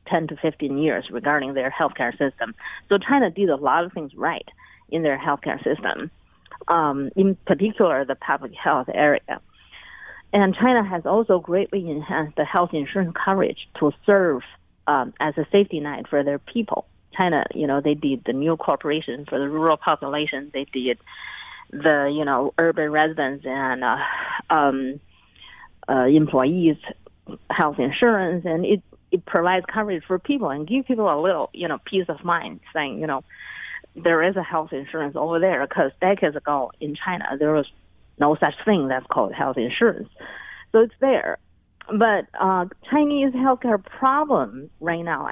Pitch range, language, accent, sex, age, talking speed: 145-195 Hz, English, American, female, 40-59, 165 wpm